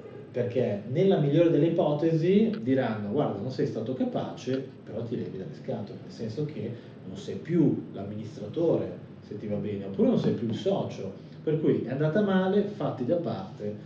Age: 30-49